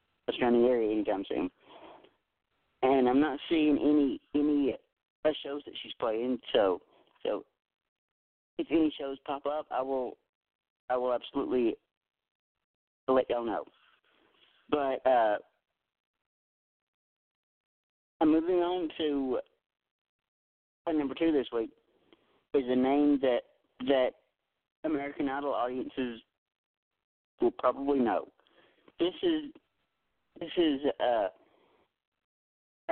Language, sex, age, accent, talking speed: English, male, 40-59, American, 100 wpm